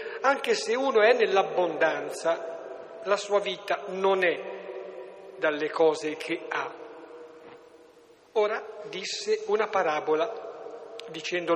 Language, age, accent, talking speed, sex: Italian, 60-79, native, 100 wpm, male